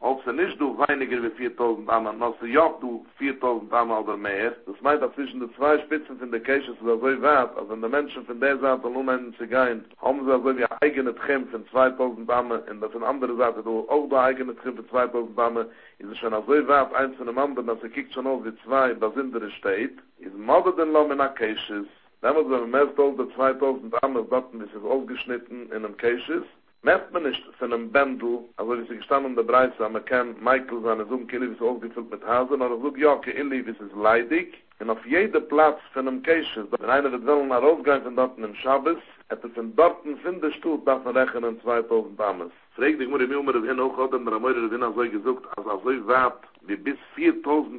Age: 60-79